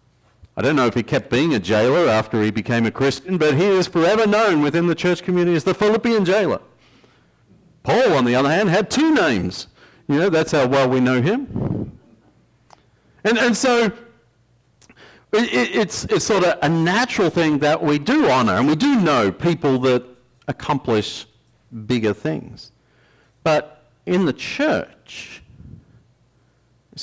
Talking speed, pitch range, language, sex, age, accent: 160 wpm, 105-150 Hz, English, male, 50-69, Australian